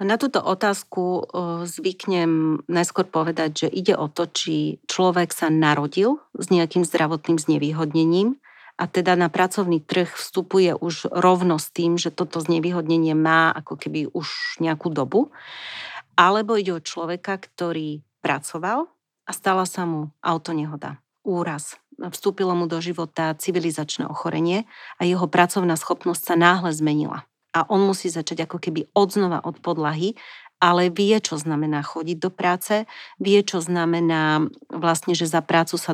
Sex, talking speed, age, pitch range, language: female, 145 wpm, 40-59, 165-195 Hz, Slovak